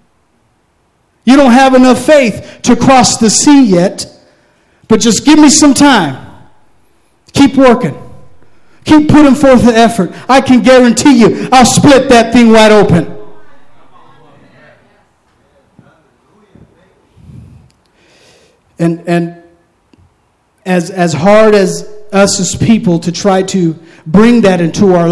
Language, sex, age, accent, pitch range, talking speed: English, male, 40-59, American, 195-250 Hz, 115 wpm